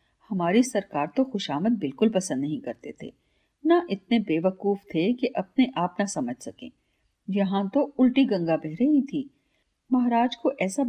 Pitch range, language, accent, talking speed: 190-270 Hz, Hindi, native, 160 wpm